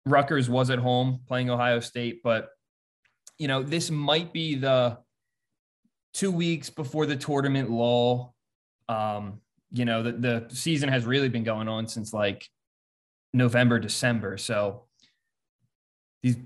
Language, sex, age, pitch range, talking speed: English, male, 20-39, 115-140 Hz, 135 wpm